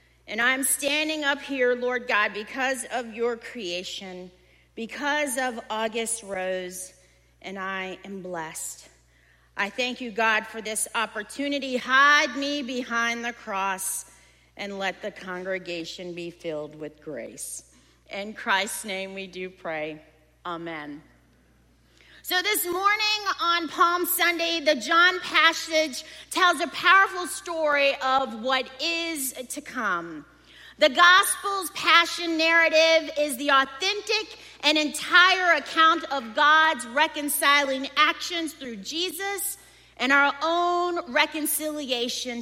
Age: 40-59